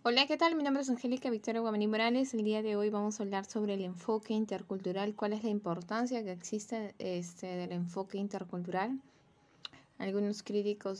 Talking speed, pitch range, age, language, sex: 180 wpm, 185-225 Hz, 20-39, Spanish, female